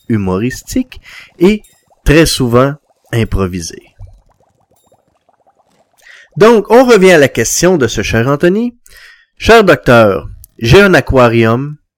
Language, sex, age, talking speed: French, male, 30-49, 100 wpm